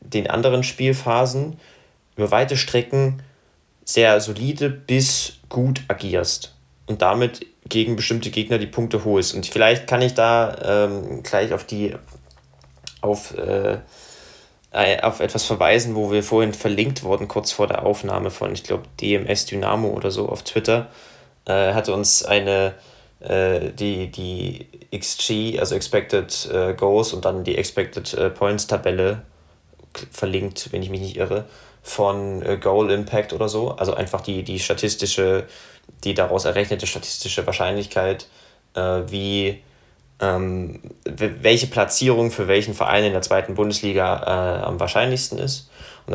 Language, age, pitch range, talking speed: German, 20-39, 95-115 Hz, 140 wpm